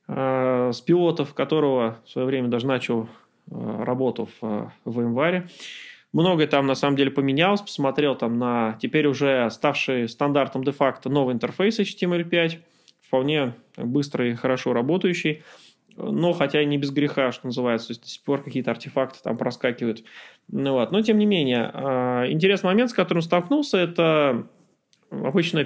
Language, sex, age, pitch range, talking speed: Russian, male, 20-39, 130-170 Hz, 150 wpm